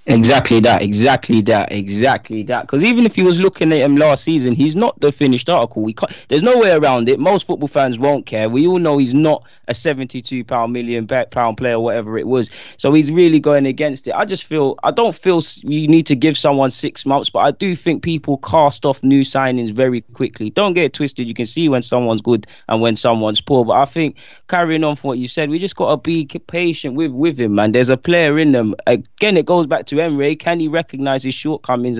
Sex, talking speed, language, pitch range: male, 235 wpm, English, 120-160 Hz